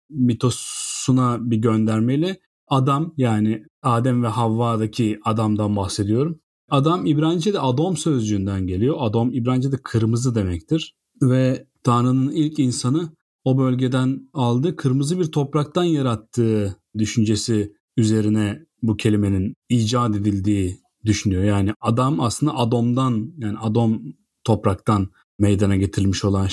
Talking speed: 105 wpm